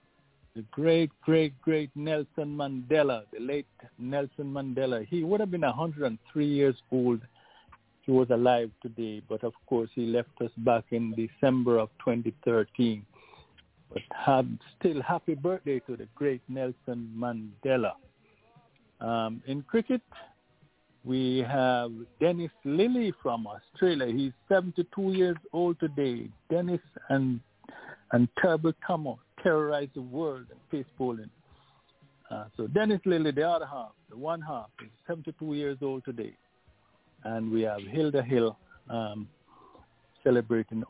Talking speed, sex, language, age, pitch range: 130 wpm, male, English, 50-69, 115-155 Hz